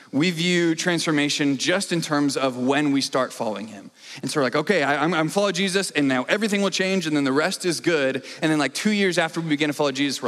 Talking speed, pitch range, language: 255 wpm, 135-180 Hz, English